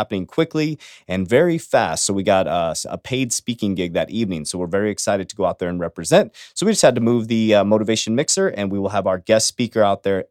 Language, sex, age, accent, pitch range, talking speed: English, male, 30-49, American, 95-140 Hz, 260 wpm